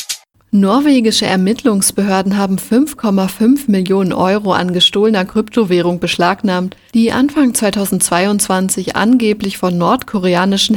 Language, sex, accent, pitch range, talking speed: German, female, German, 185-225 Hz, 90 wpm